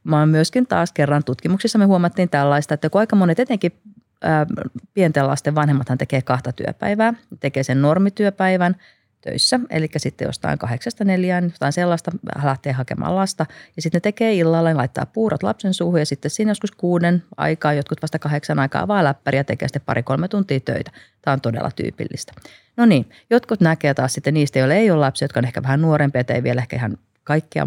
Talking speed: 180 wpm